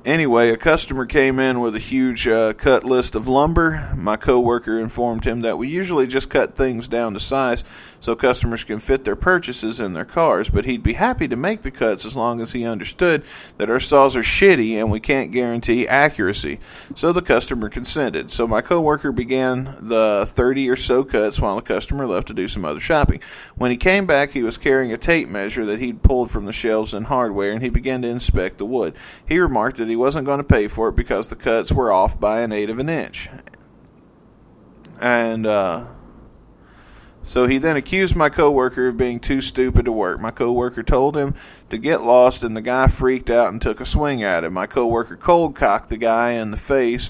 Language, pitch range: English, 110-130 Hz